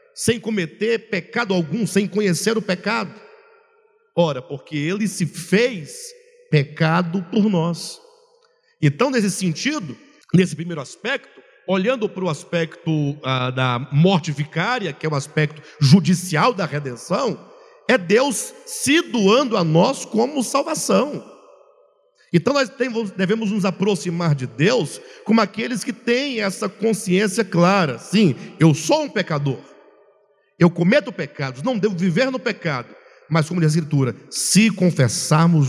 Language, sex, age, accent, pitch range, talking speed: Portuguese, male, 50-69, Brazilian, 160-230 Hz, 130 wpm